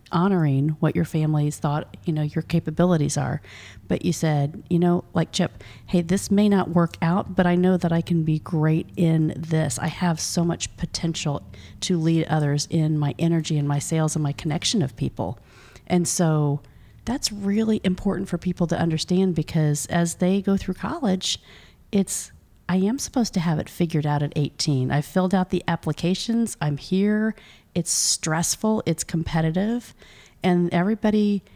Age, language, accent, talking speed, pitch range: 40-59, English, American, 175 wpm, 150-185 Hz